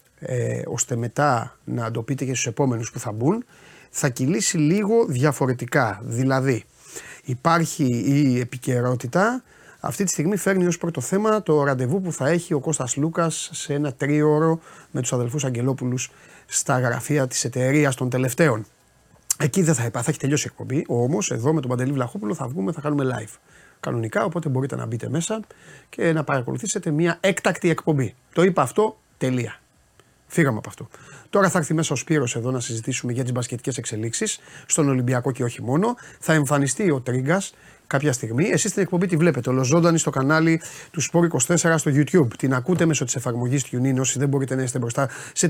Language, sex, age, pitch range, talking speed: Greek, male, 30-49, 130-165 Hz, 180 wpm